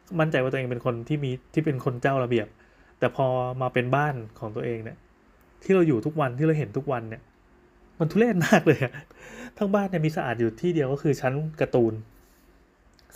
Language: Thai